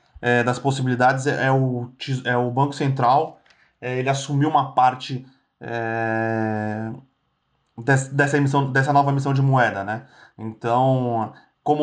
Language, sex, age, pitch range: Portuguese, male, 20-39, 125-145 Hz